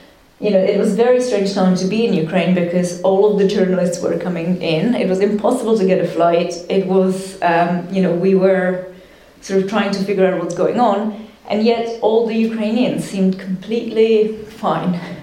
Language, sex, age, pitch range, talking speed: English, female, 20-39, 180-210 Hz, 200 wpm